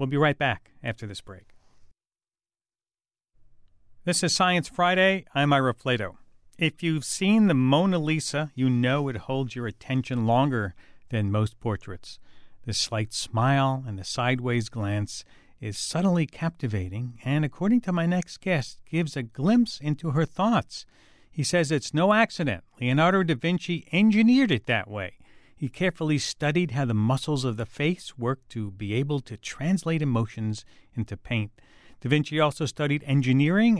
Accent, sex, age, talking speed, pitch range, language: American, male, 50-69, 155 wpm, 115-155 Hz, English